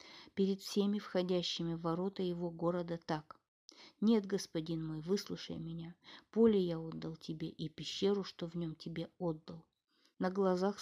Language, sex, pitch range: Russian, female, 170-200 Hz